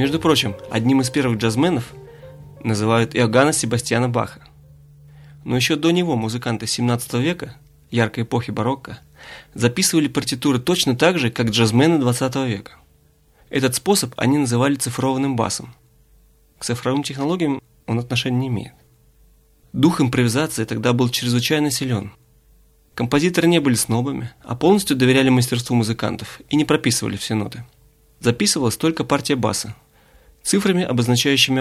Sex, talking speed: male, 130 wpm